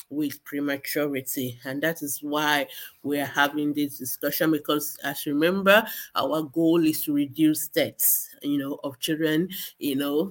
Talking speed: 155 wpm